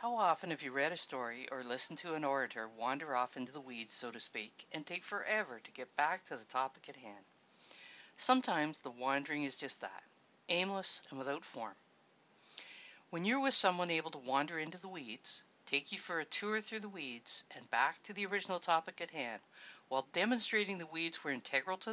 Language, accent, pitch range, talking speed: English, American, 135-185 Hz, 205 wpm